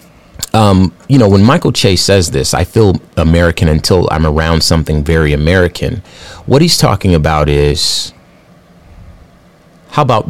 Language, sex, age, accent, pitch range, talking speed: English, male, 30-49, American, 85-105 Hz, 140 wpm